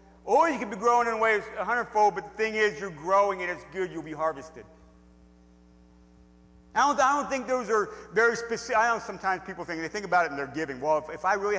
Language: English